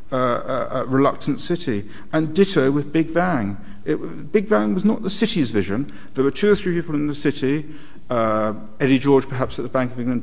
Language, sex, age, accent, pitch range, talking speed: English, male, 50-69, British, 110-150 Hz, 210 wpm